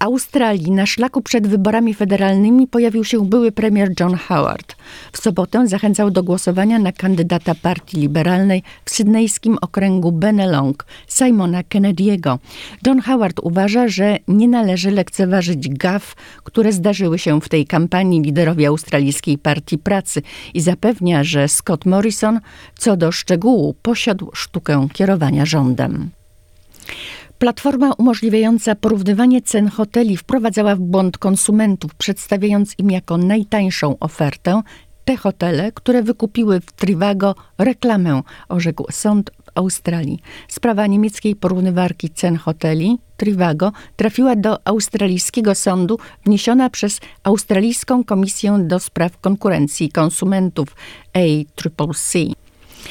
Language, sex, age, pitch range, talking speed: Polish, female, 50-69, 170-220 Hz, 115 wpm